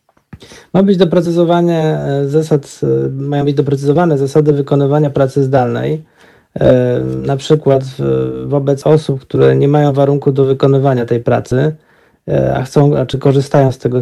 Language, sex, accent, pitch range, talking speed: Polish, male, native, 135-155 Hz, 125 wpm